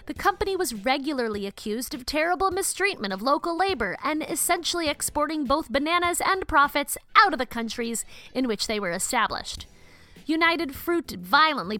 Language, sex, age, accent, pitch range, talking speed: English, female, 30-49, American, 210-320 Hz, 155 wpm